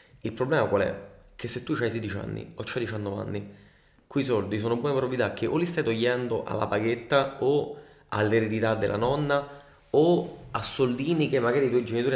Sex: male